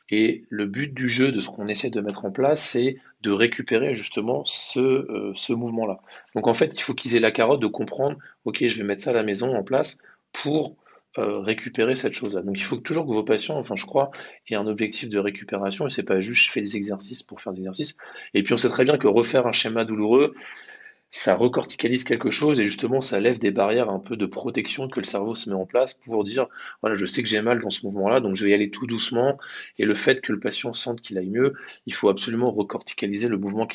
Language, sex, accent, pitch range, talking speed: French, male, French, 100-125 Hz, 250 wpm